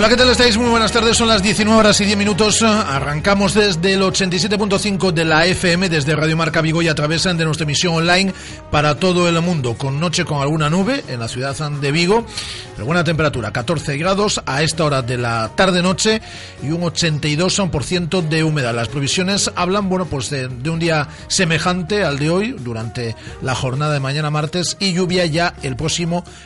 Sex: male